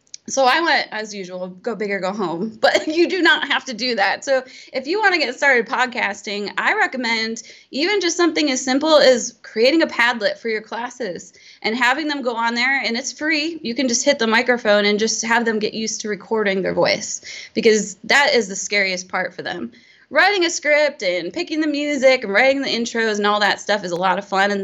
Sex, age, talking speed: female, 20-39, 230 wpm